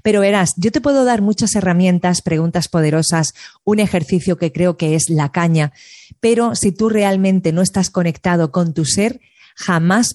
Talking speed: 170 wpm